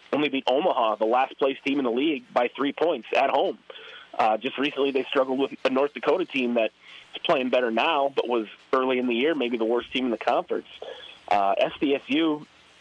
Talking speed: 205 wpm